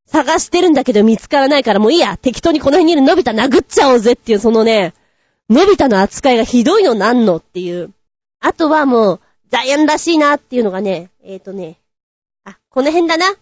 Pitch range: 220-345 Hz